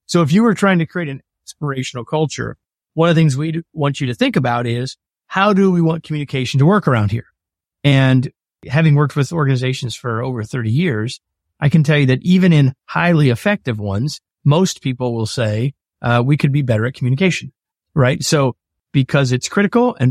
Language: English